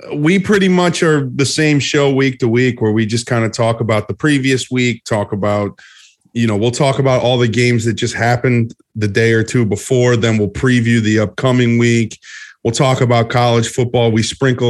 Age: 30-49